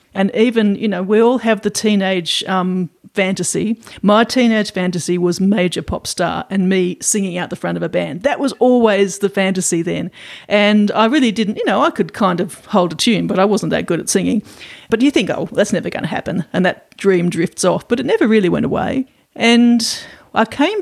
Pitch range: 190-240 Hz